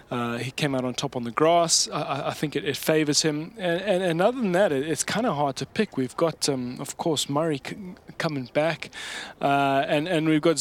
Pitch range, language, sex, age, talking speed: 135-160 Hz, English, male, 20-39, 245 wpm